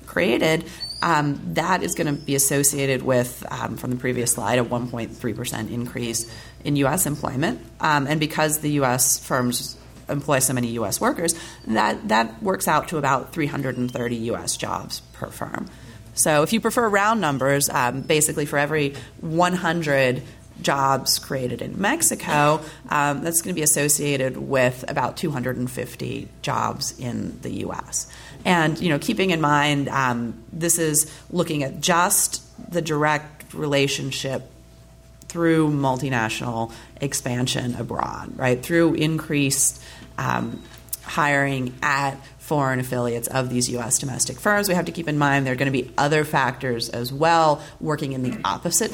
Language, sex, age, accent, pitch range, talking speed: English, female, 30-49, American, 125-155 Hz, 150 wpm